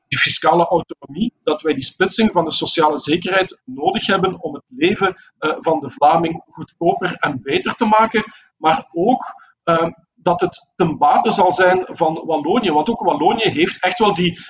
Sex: male